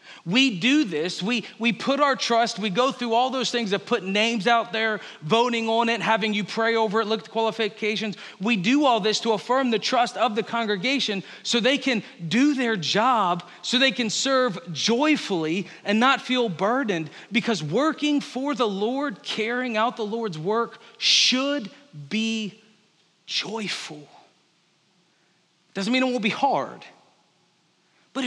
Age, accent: 40-59, American